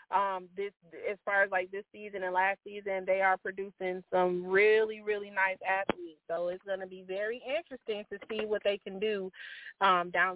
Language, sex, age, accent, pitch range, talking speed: English, female, 30-49, American, 190-240 Hz, 195 wpm